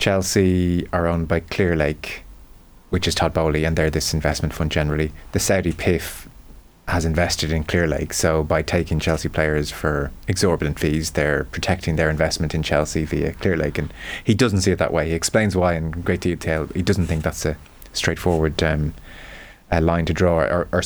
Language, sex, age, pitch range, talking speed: English, male, 20-39, 80-100 Hz, 195 wpm